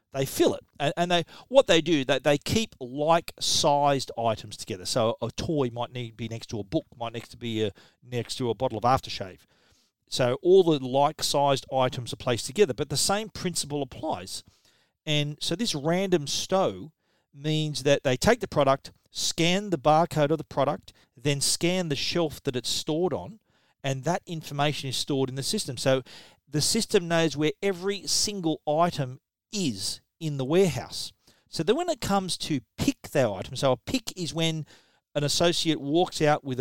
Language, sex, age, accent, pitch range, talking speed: English, male, 40-59, Australian, 130-170 Hz, 190 wpm